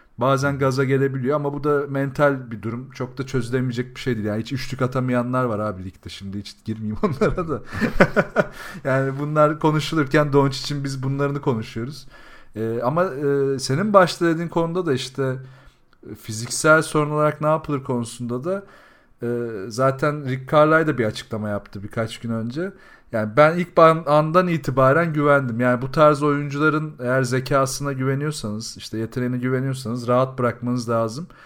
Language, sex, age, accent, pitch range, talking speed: Turkish, male, 40-59, native, 115-145 Hz, 145 wpm